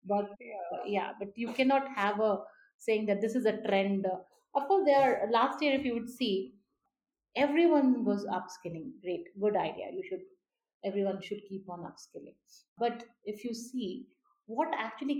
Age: 50-69